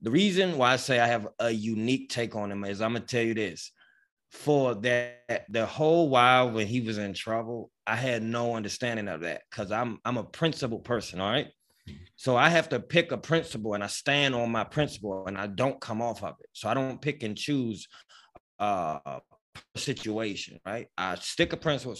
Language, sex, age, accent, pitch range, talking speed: English, male, 20-39, American, 110-145 Hz, 205 wpm